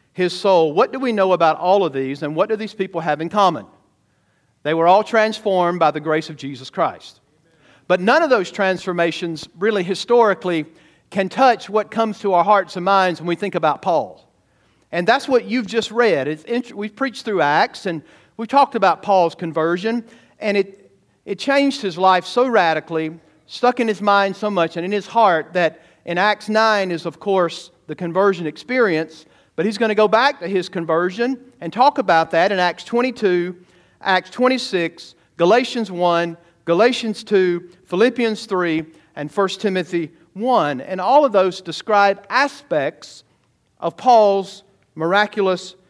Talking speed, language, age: 175 wpm, English, 50-69